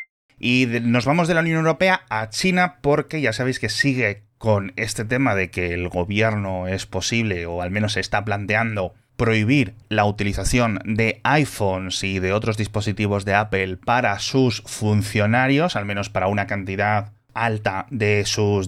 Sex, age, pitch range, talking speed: male, 30-49, 105-135 Hz, 165 wpm